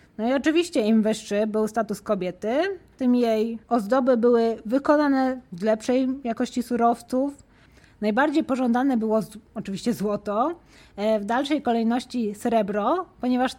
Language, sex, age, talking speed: Polish, female, 20-39, 120 wpm